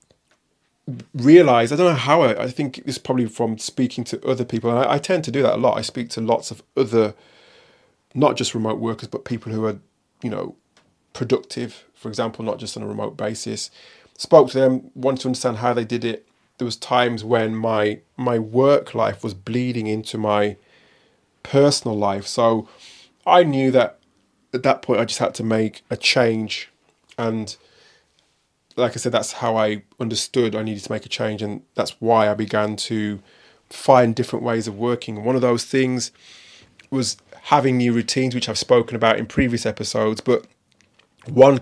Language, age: English, 30-49